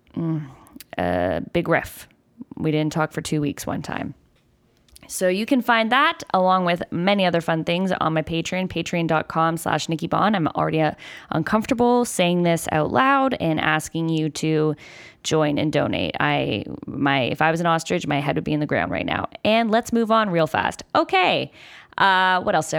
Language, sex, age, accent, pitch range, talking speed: English, female, 10-29, American, 155-195 Hz, 185 wpm